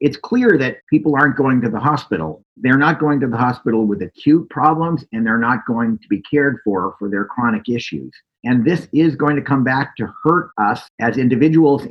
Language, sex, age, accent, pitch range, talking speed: English, male, 50-69, American, 110-145 Hz, 210 wpm